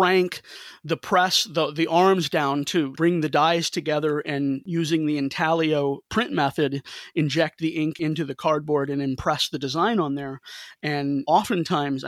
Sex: male